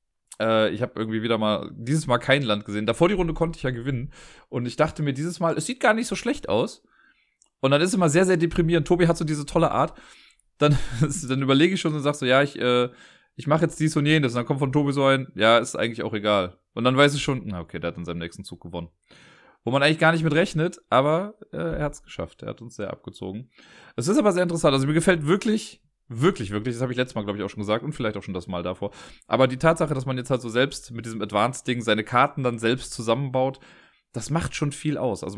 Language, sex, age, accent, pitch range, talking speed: German, male, 30-49, German, 115-155 Hz, 260 wpm